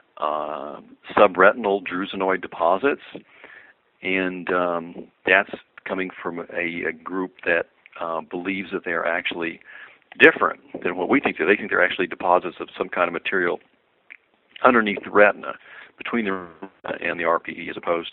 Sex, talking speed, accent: male, 150 wpm, American